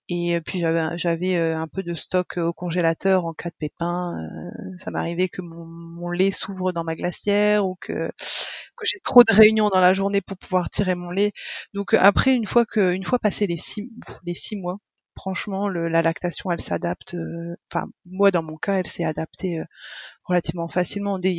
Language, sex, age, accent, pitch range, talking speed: French, female, 20-39, French, 175-200 Hz, 205 wpm